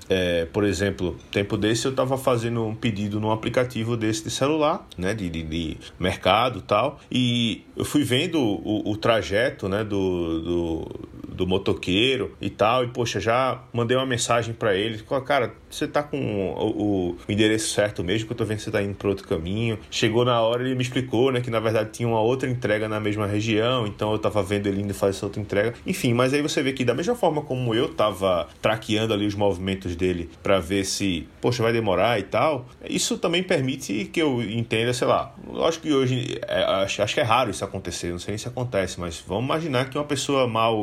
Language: Portuguese